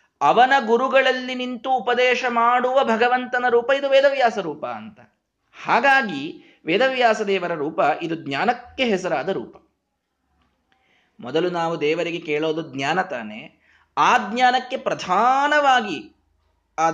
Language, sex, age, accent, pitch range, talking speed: Kannada, male, 20-39, native, 155-245 Hz, 100 wpm